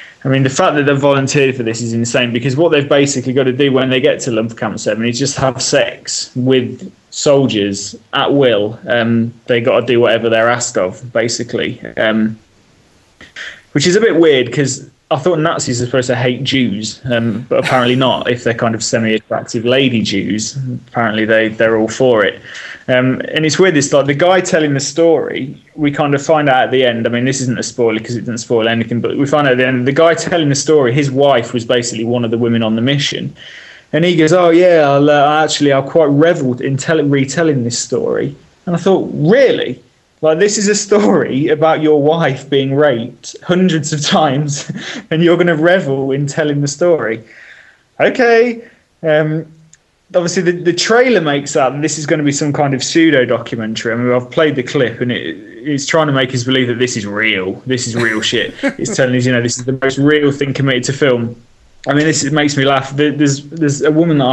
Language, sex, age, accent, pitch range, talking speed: English, male, 20-39, British, 120-155 Hz, 220 wpm